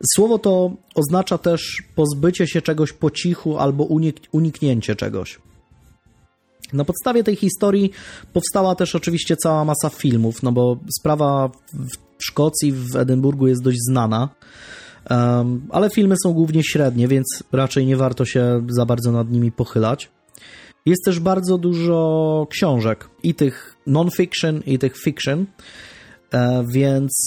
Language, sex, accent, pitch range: Polish, male, native, 120-155 Hz